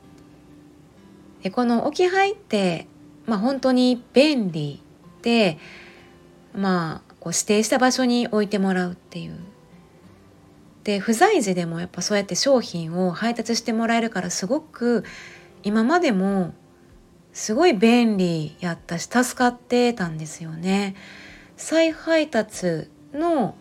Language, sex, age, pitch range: Japanese, female, 30-49, 175-255 Hz